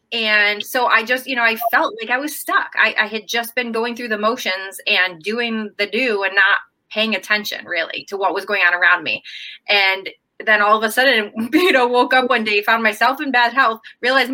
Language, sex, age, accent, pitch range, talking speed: English, female, 20-39, American, 190-230 Hz, 230 wpm